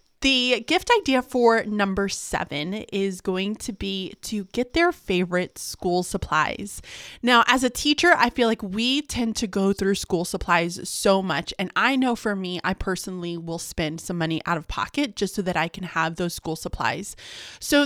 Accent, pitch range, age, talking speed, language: American, 185-245 Hz, 20-39, 190 wpm, English